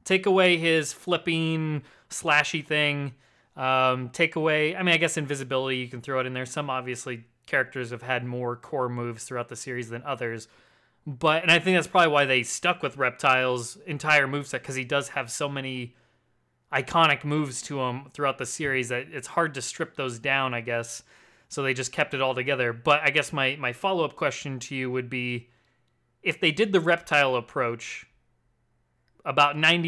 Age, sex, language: 20-39, male, English